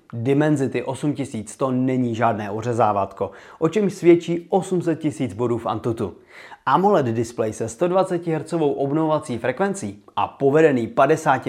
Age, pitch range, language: 30-49, 120-160 Hz, Czech